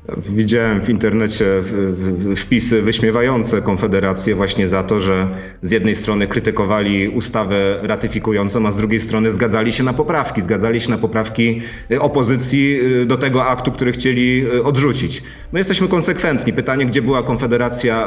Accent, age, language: native, 30-49, Polish